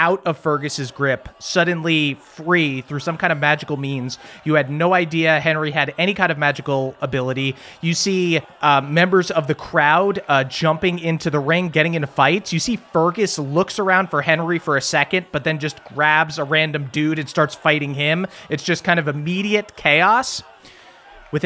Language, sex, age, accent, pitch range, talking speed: English, male, 30-49, American, 140-170 Hz, 185 wpm